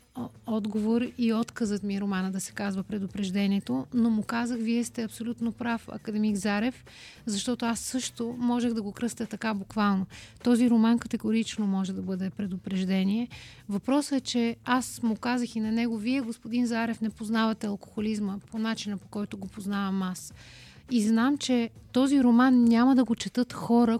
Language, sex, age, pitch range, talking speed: Bulgarian, female, 30-49, 205-240 Hz, 170 wpm